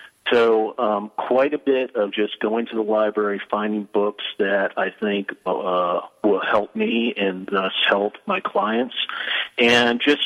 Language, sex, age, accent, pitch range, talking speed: English, male, 40-59, American, 100-120 Hz, 160 wpm